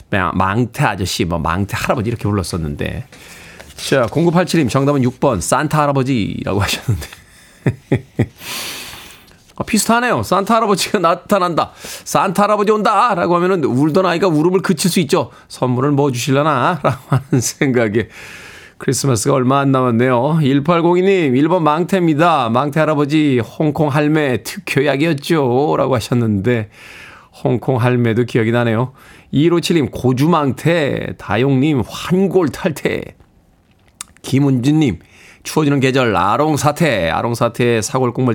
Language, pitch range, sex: Korean, 115-155 Hz, male